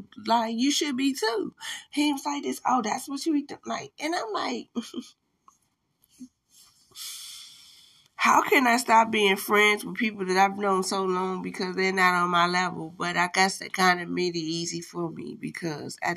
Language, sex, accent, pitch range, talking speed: English, female, American, 175-220 Hz, 185 wpm